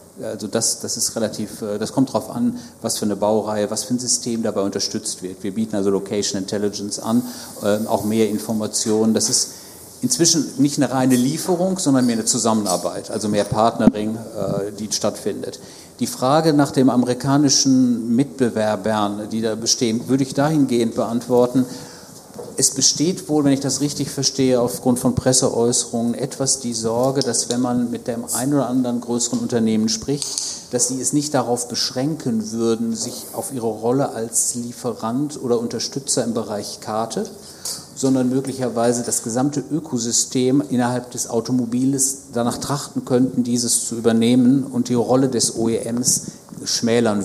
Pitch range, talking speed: 110-135 Hz, 155 wpm